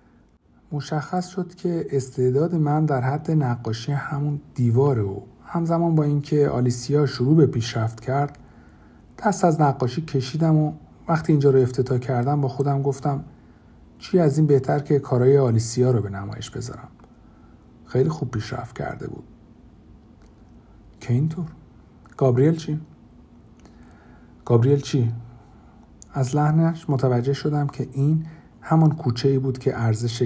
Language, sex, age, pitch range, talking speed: Persian, male, 50-69, 115-150 Hz, 130 wpm